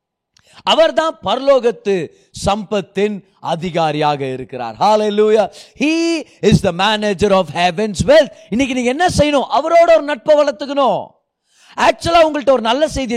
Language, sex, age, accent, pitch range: Tamil, male, 30-49, native, 205-290 Hz